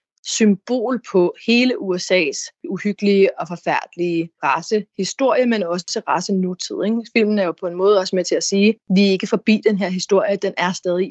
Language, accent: Danish, native